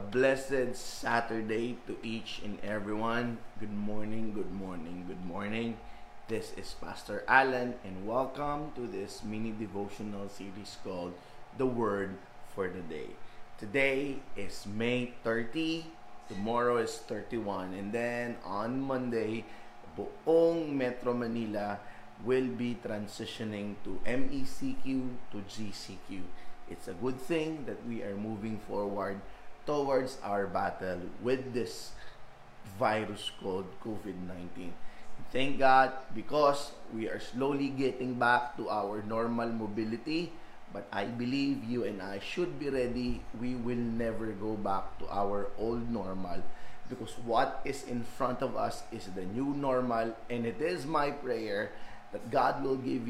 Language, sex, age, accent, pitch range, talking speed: Filipino, male, 20-39, native, 105-130 Hz, 135 wpm